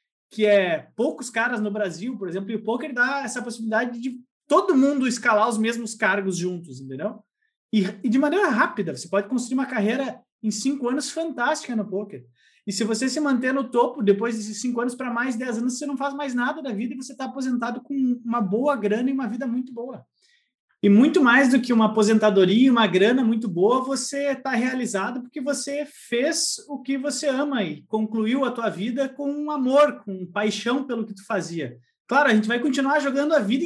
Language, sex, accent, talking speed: Portuguese, male, Brazilian, 210 wpm